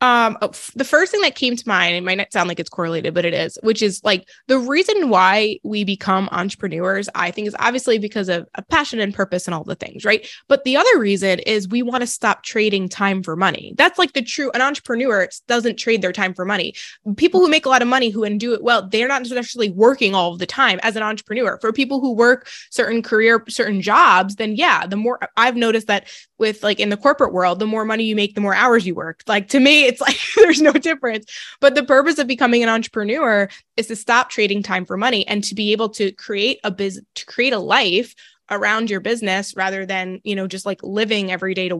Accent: American